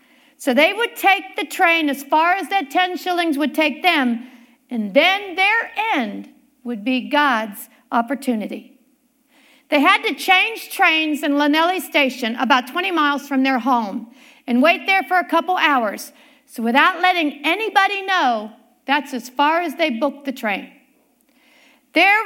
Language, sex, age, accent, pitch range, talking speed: English, female, 50-69, American, 260-350 Hz, 155 wpm